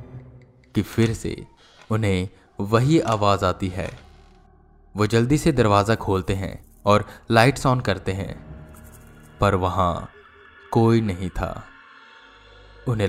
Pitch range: 95-115 Hz